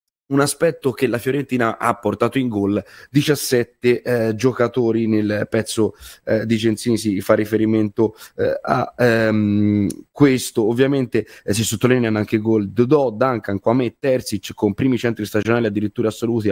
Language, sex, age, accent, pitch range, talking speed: Italian, male, 20-39, native, 105-130 Hz, 155 wpm